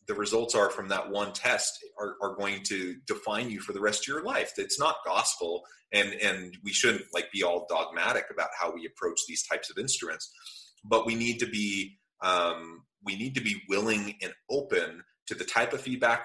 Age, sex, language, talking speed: 30-49, male, English, 205 wpm